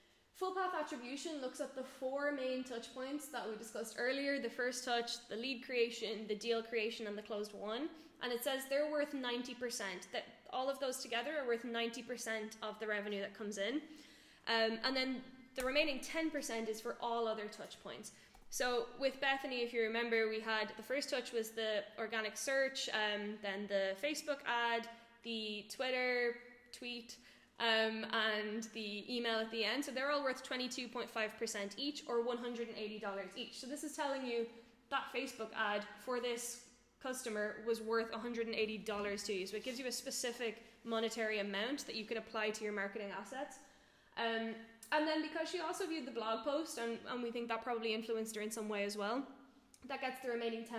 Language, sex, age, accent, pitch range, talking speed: German, female, 10-29, Irish, 220-260 Hz, 185 wpm